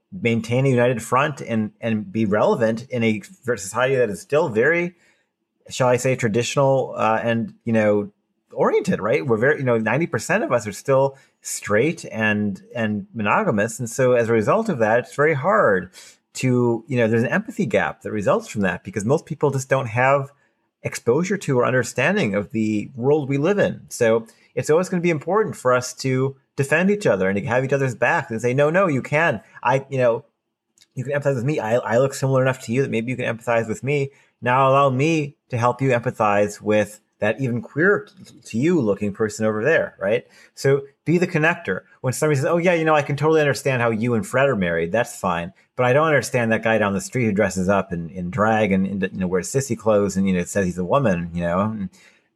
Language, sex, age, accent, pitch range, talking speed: English, male, 30-49, American, 110-140 Hz, 220 wpm